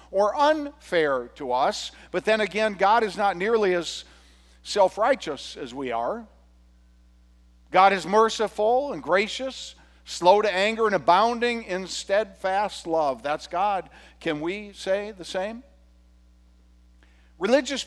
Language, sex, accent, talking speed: English, male, American, 125 wpm